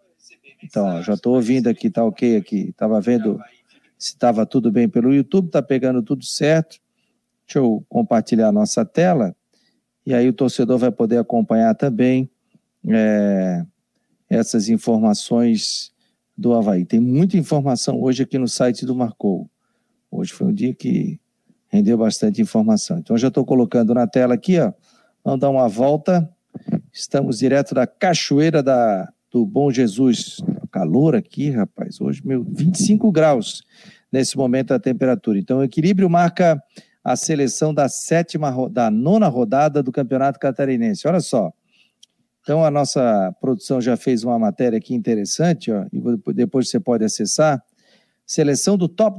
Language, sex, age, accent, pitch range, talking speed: Portuguese, male, 50-69, Brazilian, 125-175 Hz, 145 wpm